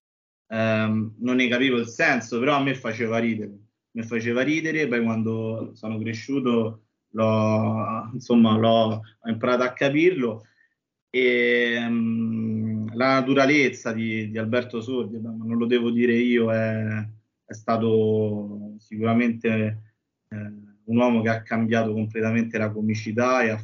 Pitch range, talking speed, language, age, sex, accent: 110-125 Hz, 125 wpm, Italian, 20-39, male, native